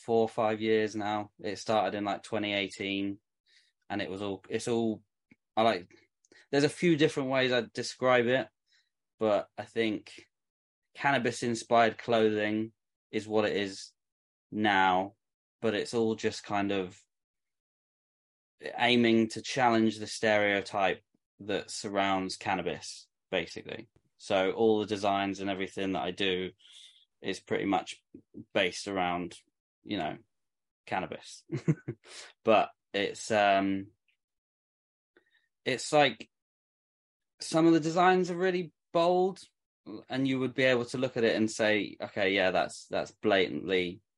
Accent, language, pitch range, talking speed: British, English, 95-120 Hz, 130 wpm